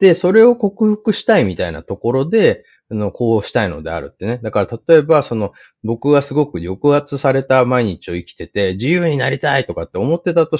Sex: male